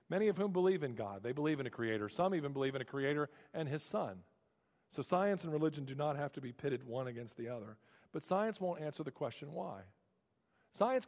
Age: 50-69